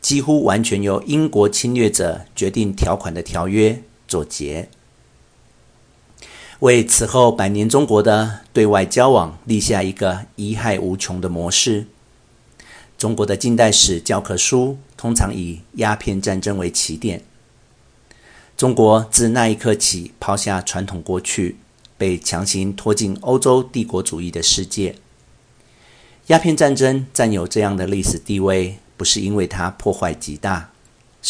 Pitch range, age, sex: 95-115 Hz, 50-69, male